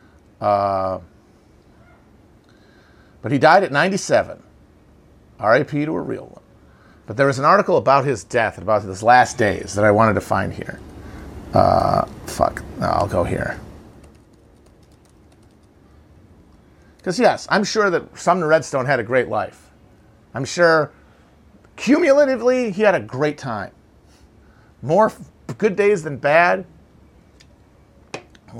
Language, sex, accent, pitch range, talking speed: English, male, American, 105-165 Hz, 125 wpm